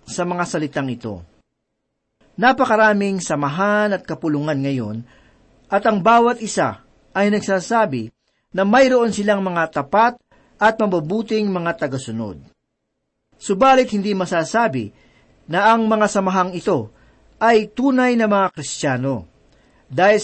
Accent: native